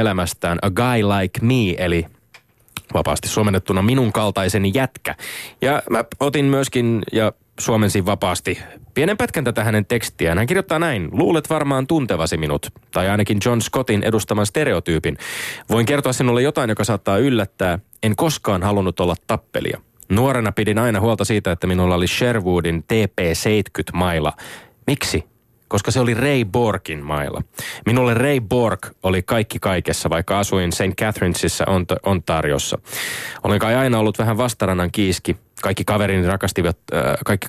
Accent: native